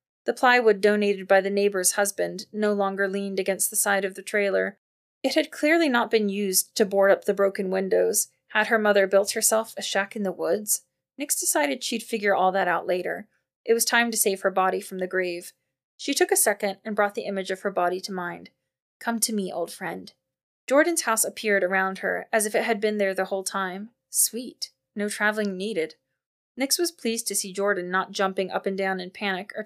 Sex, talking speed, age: female, 215 wpm, 20-39